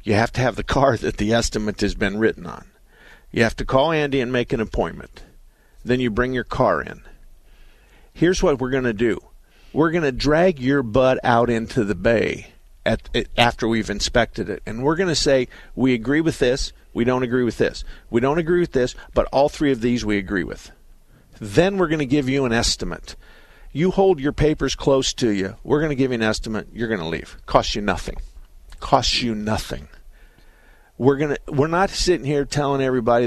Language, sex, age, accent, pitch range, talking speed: English, male, 50-69, American, 110-140 Hz, 205 wpm